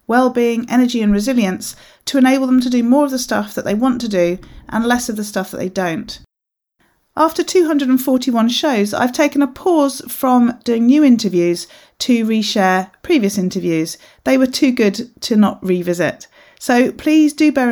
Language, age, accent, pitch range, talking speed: English, 40-59, British, 190-260 Hz, 175 wpm